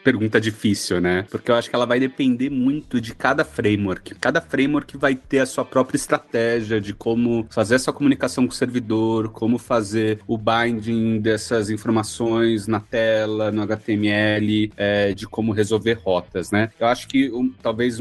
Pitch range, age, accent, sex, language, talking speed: 110-155 Hz, 30-49, Brazilian, male, Portuguese, 170 wpm